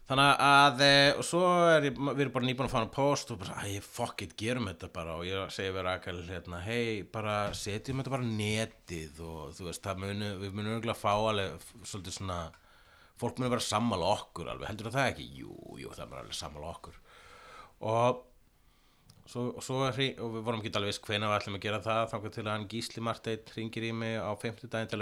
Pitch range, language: 100-125 Hz, English